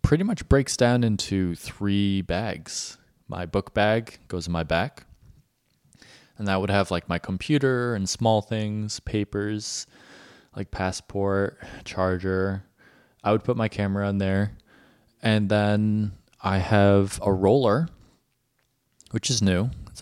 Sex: male